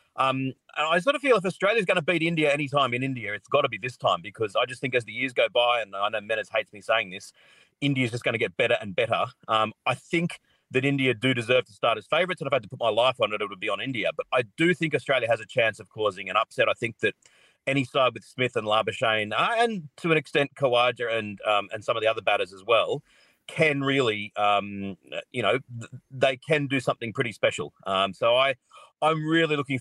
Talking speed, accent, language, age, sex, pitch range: 260 wpm, Australian, English, 40-59, male, 110-145 Hz